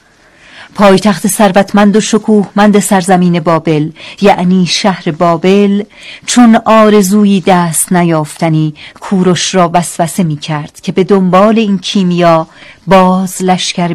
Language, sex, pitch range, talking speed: Persian, female, 170-205 Hz, 110 wpm